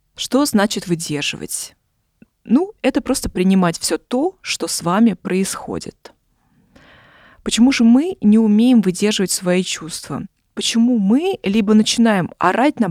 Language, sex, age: Russian, female, 20-39